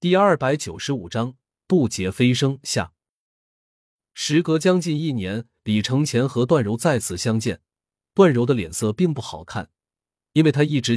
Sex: male